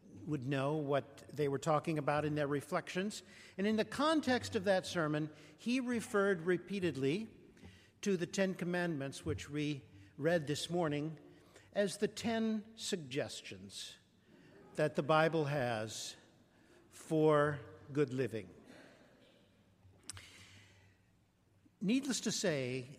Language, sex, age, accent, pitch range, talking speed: English, male, 60-79, American, 140-200 Hz, 110 wpm